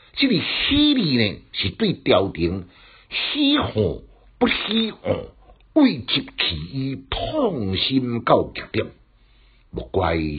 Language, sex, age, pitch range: Chinese, male, 60-79, 85-130 Hz